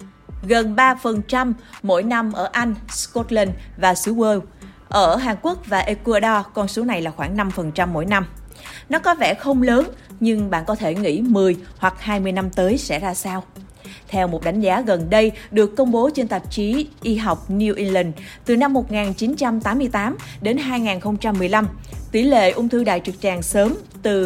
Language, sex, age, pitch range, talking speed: Vietnamese, female, 20-39, 185-240 Hz, 175 wpm